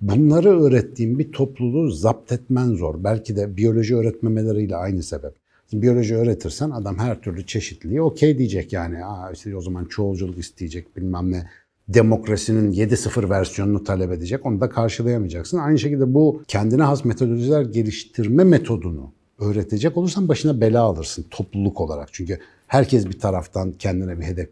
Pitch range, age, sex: 100-140 Hz, 60-79, male